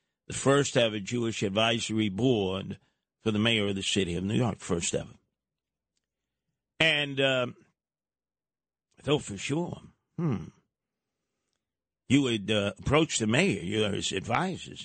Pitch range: 110-145 Hz